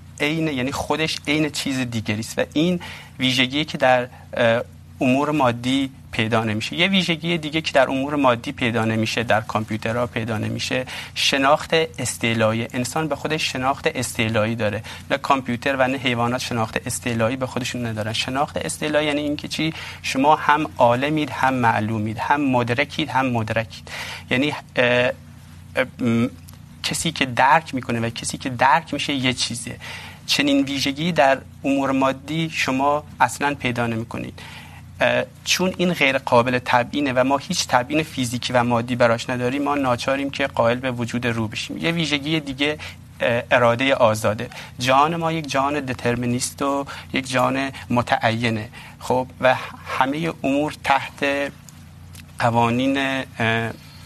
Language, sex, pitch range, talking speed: Urdu, male, 120-145 Hz, 135 wpm